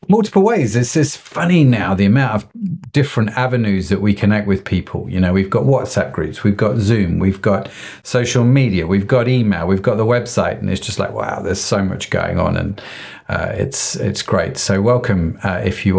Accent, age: British, 40-59